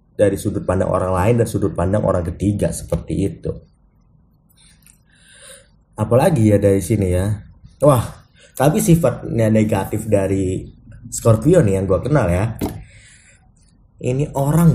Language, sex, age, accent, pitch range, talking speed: Indonesian, male, 20-39, native, 100-135 Hz, 120 wpm